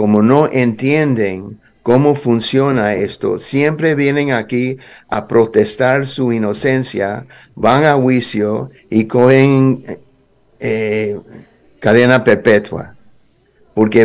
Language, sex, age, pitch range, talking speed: Spanish, male, 60-79, 115-150 Hz, 100 wpm